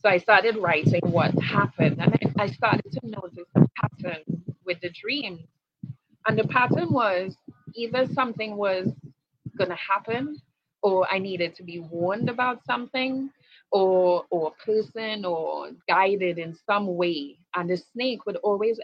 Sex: female